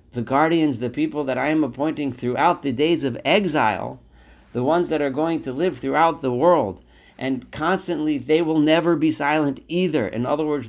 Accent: American